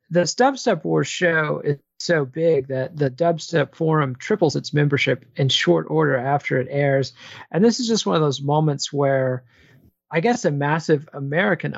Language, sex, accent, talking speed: English, male, American, 175 wpm